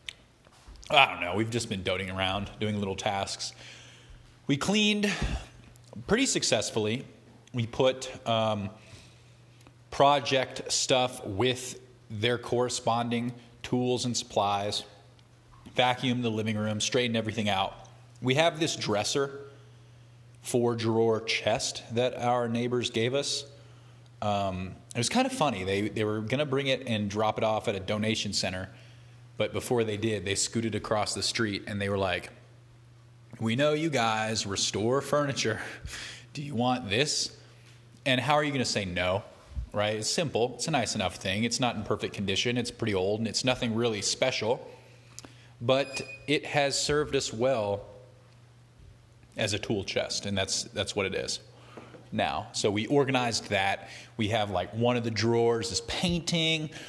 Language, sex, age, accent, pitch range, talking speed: English, male, 30-49, American, 110-125 Hz, 155 wpm